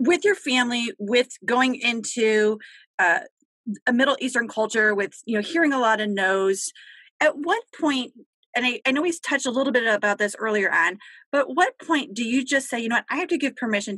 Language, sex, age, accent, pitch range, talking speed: English, female, 30-49, American, 200-260 Hz, 215 wpm